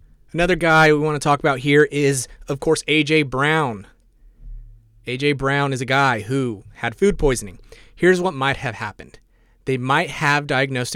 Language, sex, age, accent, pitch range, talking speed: English, male, 30-49, American, 115-140 Hz, 170 wpm